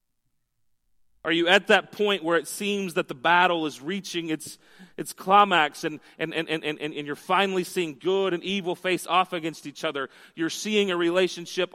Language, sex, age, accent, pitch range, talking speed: English, male, 30-49, American, 150-185 Hz, 185 wpm